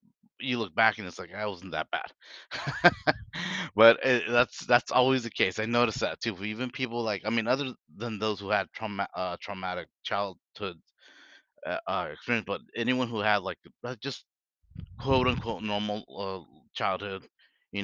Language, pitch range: English, 95-120 Hz